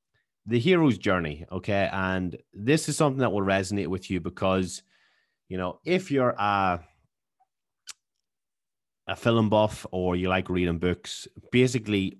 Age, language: 30-49, English